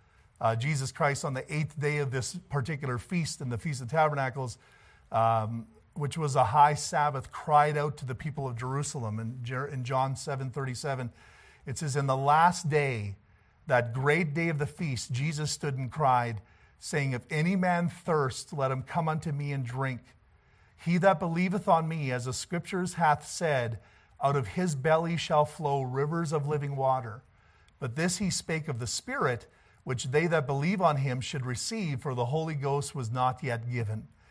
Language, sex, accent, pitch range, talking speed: English, male, American, 120-150 Hz, 185 wpm